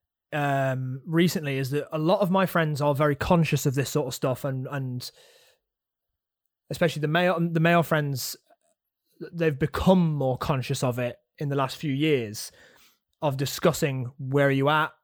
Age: 20-39